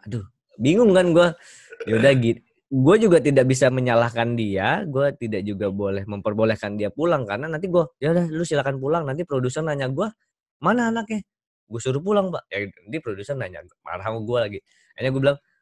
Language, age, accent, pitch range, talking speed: Indonesian, 20-39, native, 110-145 Hz, 175 wpm